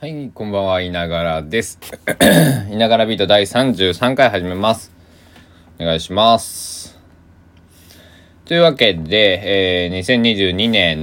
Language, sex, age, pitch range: Japanese, male, 20-39, 80-100 Hz